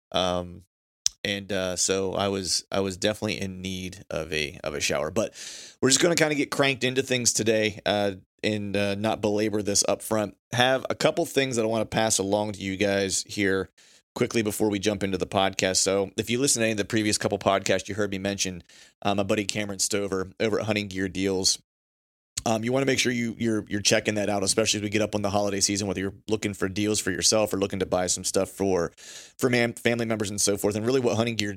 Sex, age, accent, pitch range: male, 30-49, American, 95-110 Hz